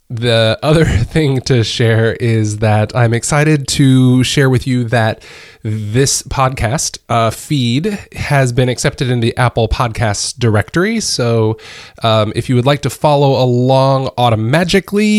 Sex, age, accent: male, 20-39, American